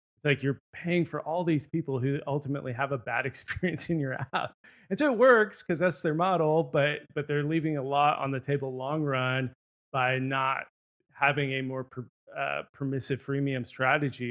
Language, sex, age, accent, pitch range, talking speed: English, male, 20-39, American, 130-150 Hz, 190 wpm